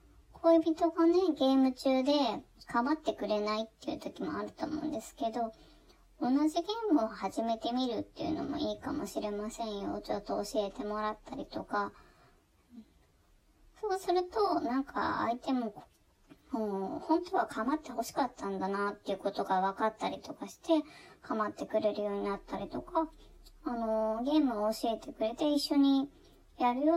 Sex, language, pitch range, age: male, Japanese, 220-315 Hz, 20-39